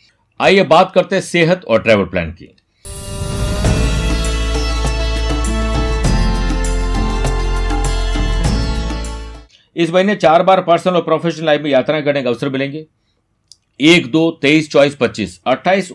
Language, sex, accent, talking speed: Hindi, male, native, 110 wpm